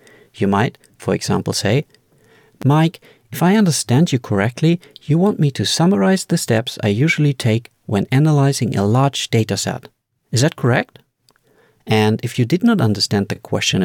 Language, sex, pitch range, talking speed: English, male, 110-155 Hz, 165 wpm